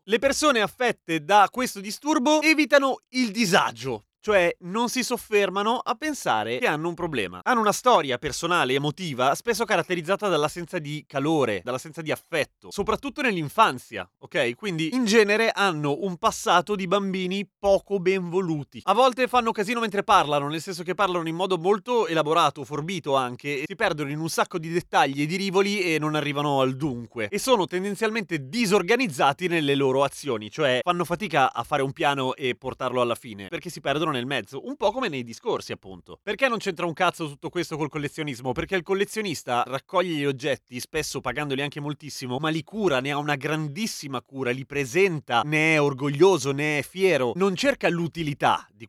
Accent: native